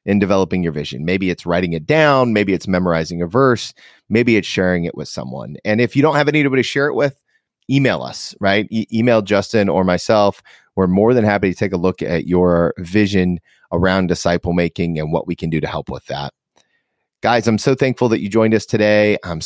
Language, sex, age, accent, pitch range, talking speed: English, male, 30-49, American, 85-110 Hz, 215 wpm